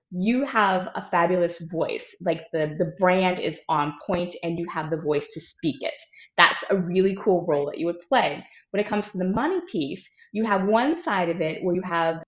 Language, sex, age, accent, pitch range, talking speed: English, female, 20-39, American, 165-210 Hz, 220 wpm